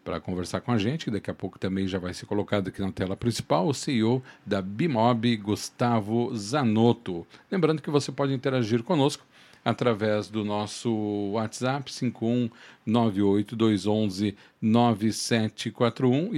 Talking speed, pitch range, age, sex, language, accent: 125 wpm, 100-130 Hz, 50-69, male, Portuguese, Brazilian